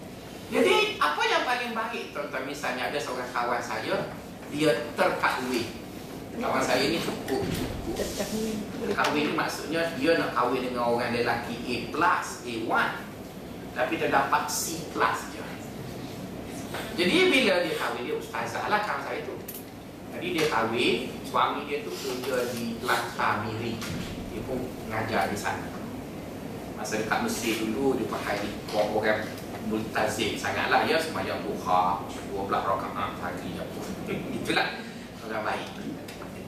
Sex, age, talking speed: male, 30-49, 130 wpm